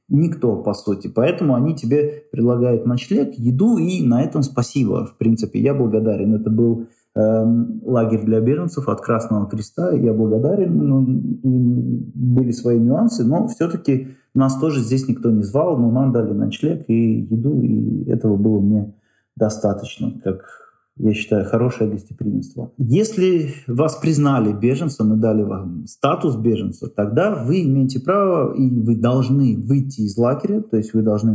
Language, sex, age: Russian, male, 30-49